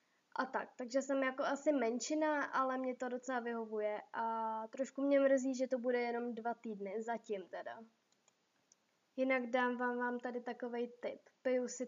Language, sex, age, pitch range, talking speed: Czech, female, 20-39, 230-265 Hz, 165 wpm